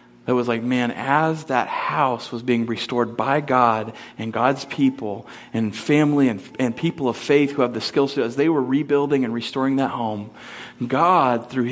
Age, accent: 40-59, American